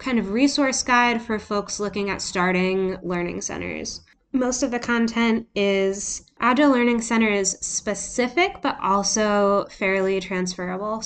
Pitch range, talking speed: 185-235 Hz, 135 wpm